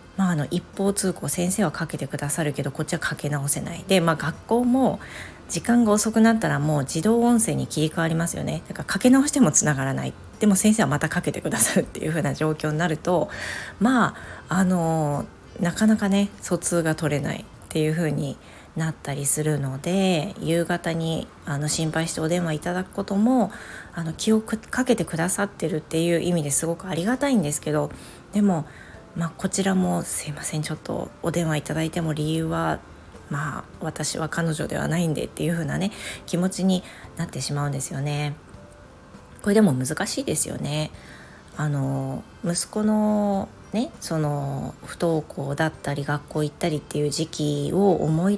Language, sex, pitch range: Japanese, female, 150-185 Hz